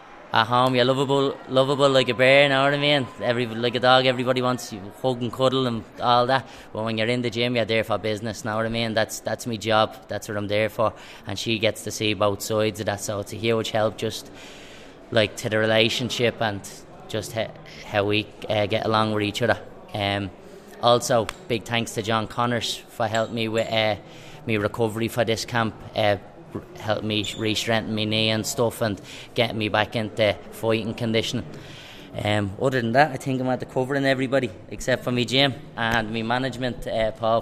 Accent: Irish